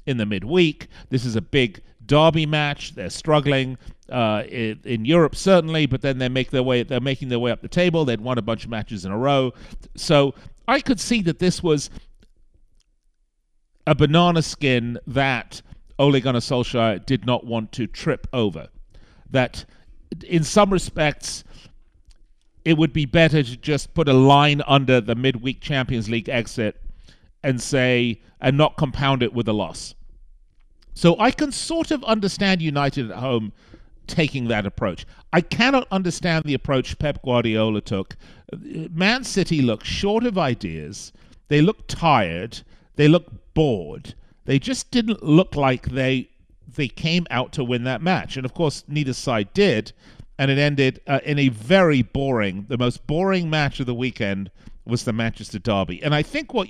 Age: 40-59